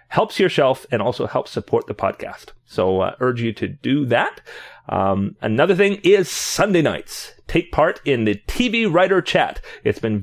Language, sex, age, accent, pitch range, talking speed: English, male, 30-49, American, 110-155 Hz, 190 wpm